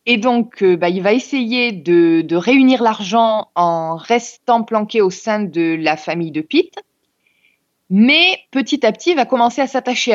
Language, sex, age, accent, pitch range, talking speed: French, female, 20-39, French, 185-250 Hz, 175 wpm